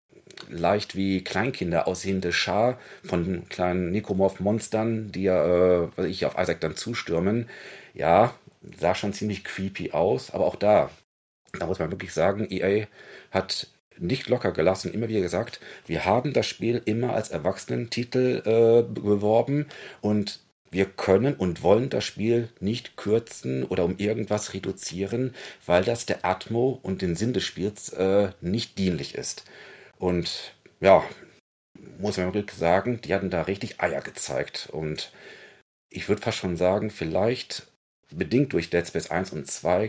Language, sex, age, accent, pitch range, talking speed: German, male, 40-59, German, 90-115 Hz, 150 wpm